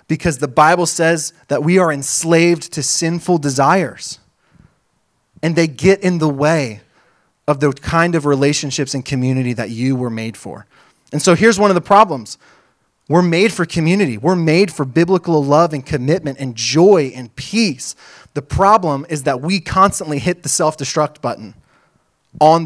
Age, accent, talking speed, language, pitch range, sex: 20-39, American, 165 wpm, English, 135-170 Hz, male